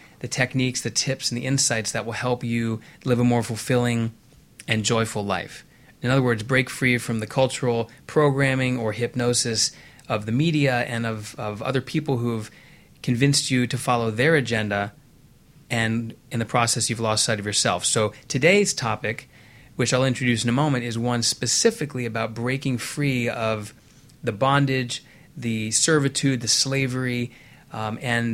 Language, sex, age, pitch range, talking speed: English, male, 30-49, 115-130 Hz, 165 wpm